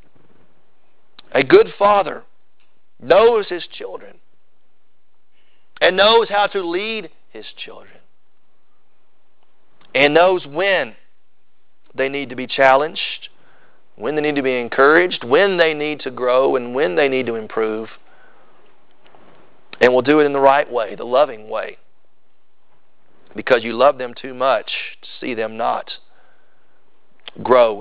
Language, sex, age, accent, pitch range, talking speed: English, male, 40-59, American, 130-195 Hz, 130 wpm